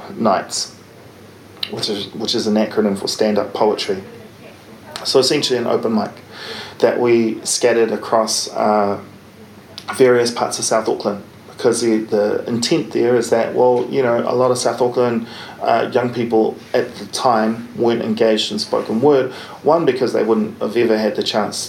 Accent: Australian